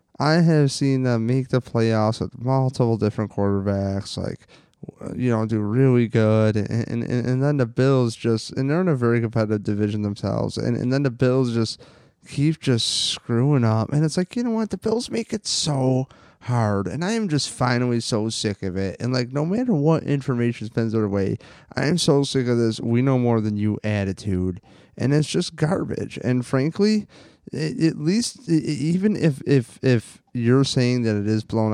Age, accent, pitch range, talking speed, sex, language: 20-39, American, 110-150 Hz, 185 wpm, male, English